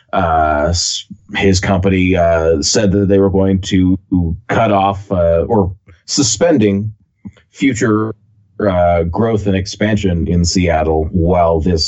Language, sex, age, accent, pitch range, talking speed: English, male, 30-49, American, 85-100 Hz, 120 wpm